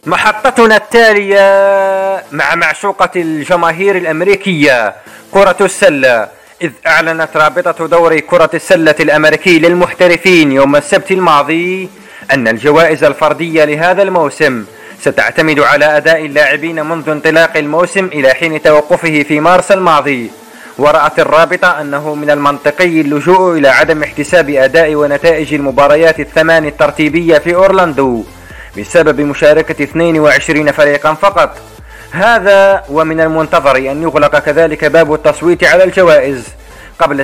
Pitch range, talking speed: 150-175 Hz, 110 wpm